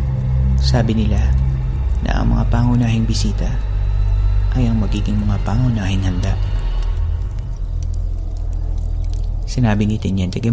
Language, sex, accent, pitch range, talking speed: Filipino, male, native, 95-115 Hz, 95 wpm